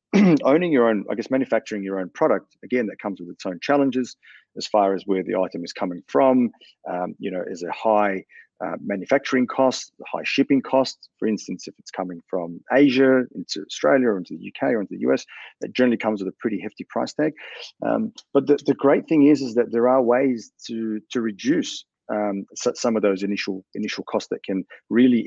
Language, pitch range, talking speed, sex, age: English, 100-125 Hz, 210 wpm, male, 30-49